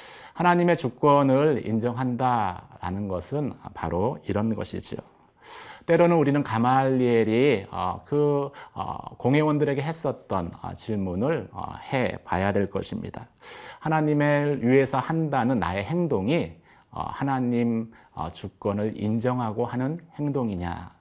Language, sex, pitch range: Korean, male, 100-145 Hz